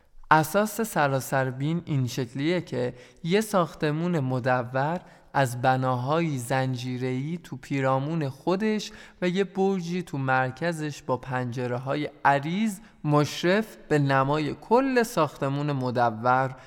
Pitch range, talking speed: 130-165 Hz, 105 wpm